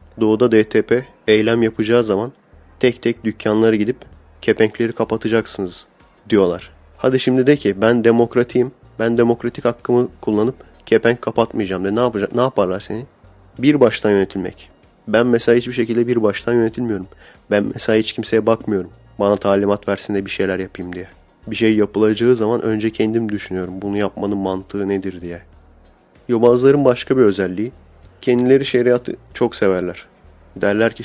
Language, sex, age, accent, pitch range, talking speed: Turkish, male, 30-49, native, 100-115 Hz, 145 wpm